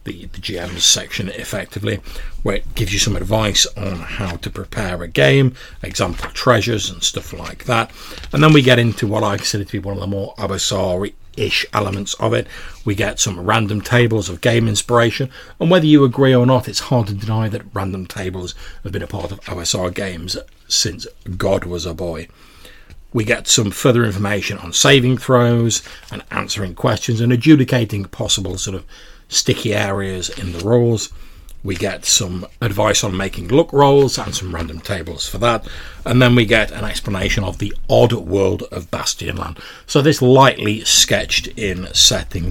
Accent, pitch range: British, 95-120 Hz